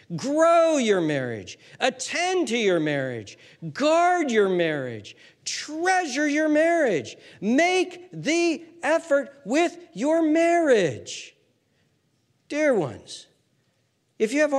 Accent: American